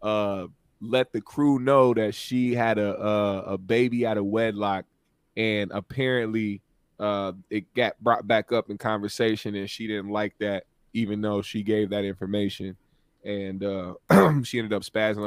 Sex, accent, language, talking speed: male, American, English, 165 wpm